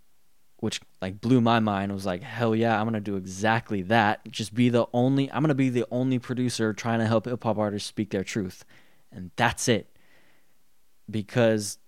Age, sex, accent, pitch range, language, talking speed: 10-29, male, American, 105-125 Hz, English, 200 wpm